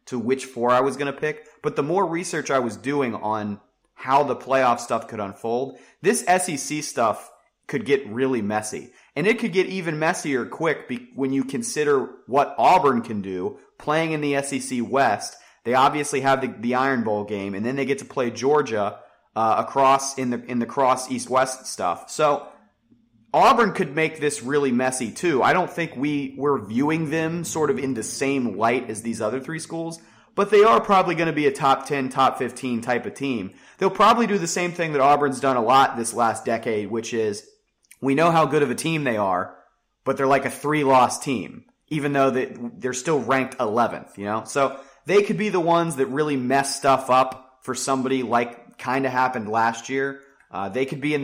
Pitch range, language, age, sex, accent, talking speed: 125-160 Hz, English, 30-49, male, American, 210 wpm